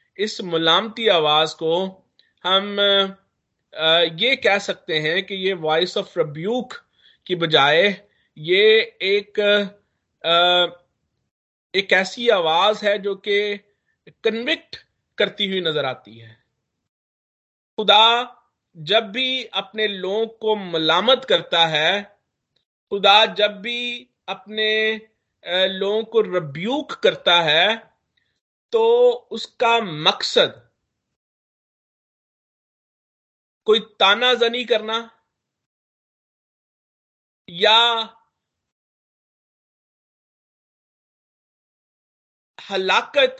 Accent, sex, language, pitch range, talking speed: native, male, Hindi, 180-225 Hz, 75 wpm